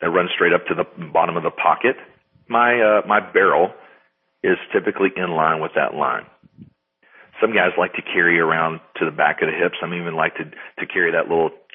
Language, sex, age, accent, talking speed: English, male, 40-59, American, 210 wpm